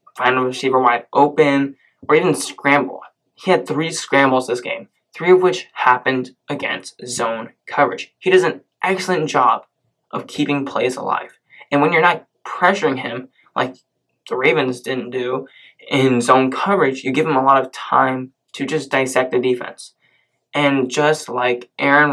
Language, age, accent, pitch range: English, 20-39, American, 130-180 Hz